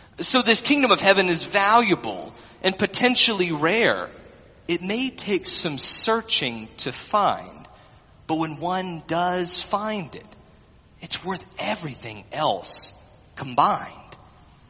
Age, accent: 30-49, American